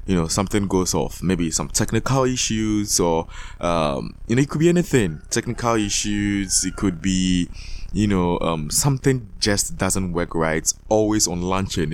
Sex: male